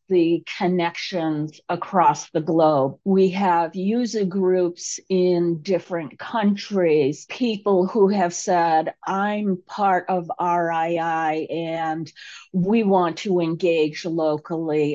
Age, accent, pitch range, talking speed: 50-69, American, 165-190 Hz, 105 wpm